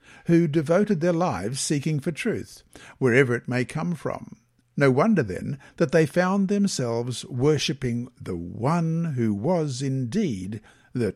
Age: 60-79